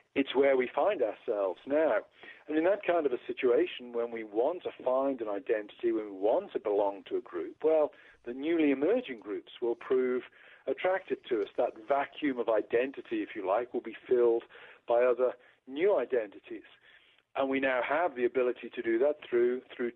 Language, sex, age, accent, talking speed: English, male, 50-69, British, 190 wpm